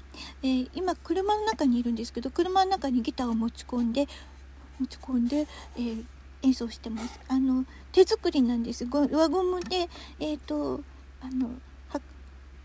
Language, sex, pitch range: Japanese, female, 235-330 Hz